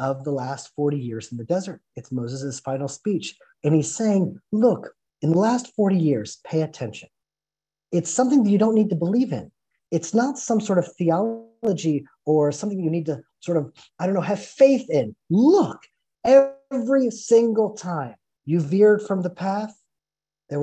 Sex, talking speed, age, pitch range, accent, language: male, 175 wpm, 30-49, 150-235 Hz, American, English